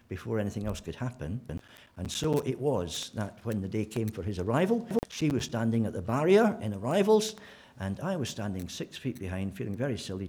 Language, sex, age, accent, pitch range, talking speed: English, male, 60-79, British, 100-130 Hz, 210 wpm